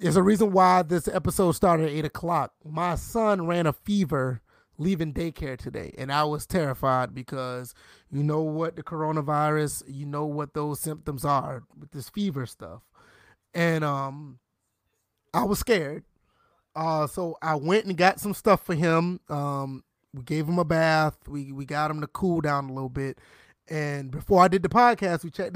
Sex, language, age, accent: male, English, 20-39, American